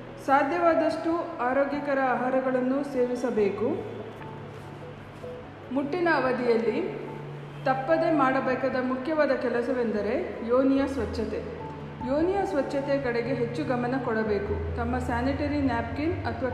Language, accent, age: Kannada, native, 50-69